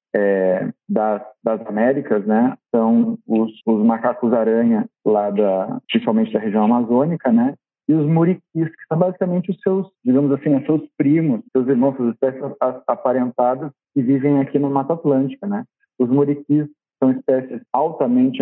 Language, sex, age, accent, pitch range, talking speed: Portuguese, male, 40-59, Brazilian, 110-150 Hz, 150 wpm